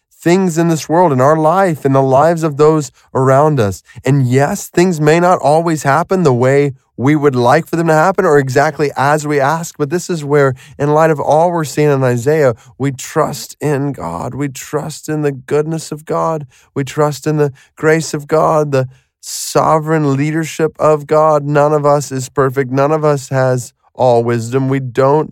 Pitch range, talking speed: 115-150 Hz, 195 wpm